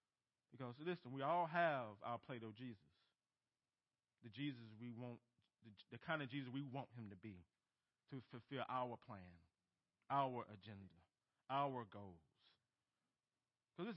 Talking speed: 135 wpm